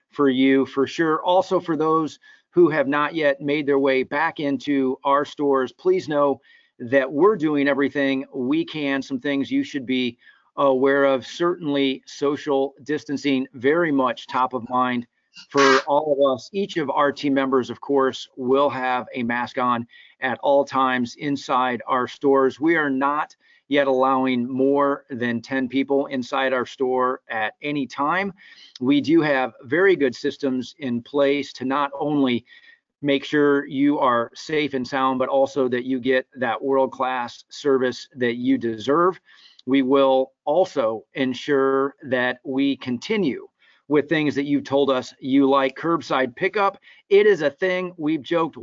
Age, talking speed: 40-59, 160 wpm